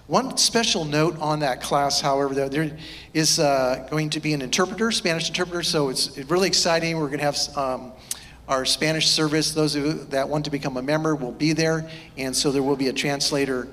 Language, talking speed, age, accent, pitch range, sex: English, 195 wpm, 50-69, American, 135-170 Hz, male